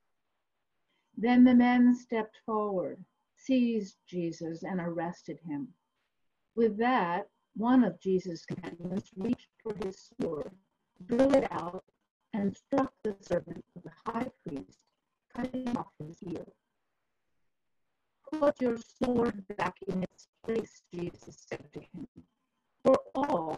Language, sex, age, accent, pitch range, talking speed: English, female, 50-69, American, 185-240 Hz, 120 wpm